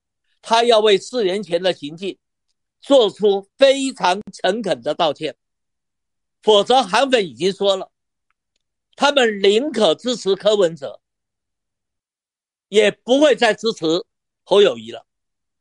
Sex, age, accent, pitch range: male, 50-69, native, 180-250 Hz